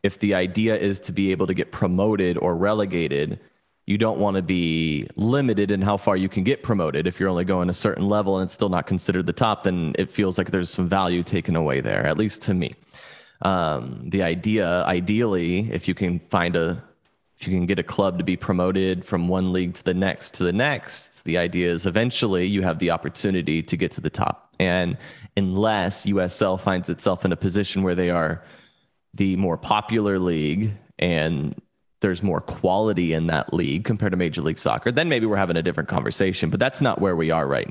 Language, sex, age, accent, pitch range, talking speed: English, male, 30-49, American, 90-105 Hz, 210 wpm